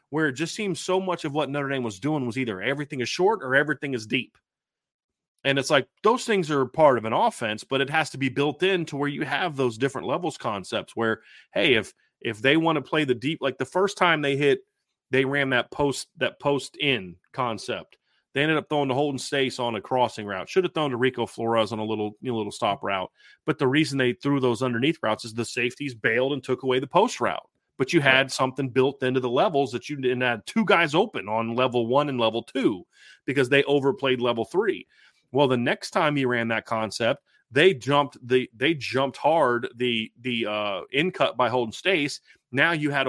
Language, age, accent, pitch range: English, 30-49, American, 120-150 Hz